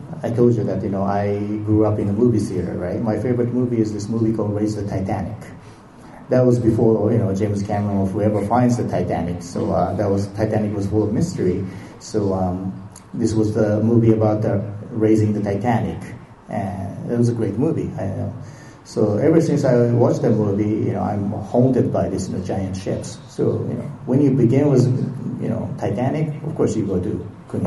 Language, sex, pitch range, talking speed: English, male, 105-125 Hz, 210 wpm